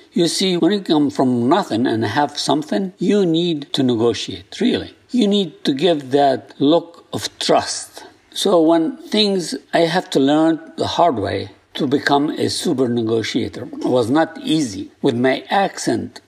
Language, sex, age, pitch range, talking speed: English, male, 60-79, 120-180 Hz, 160 wpm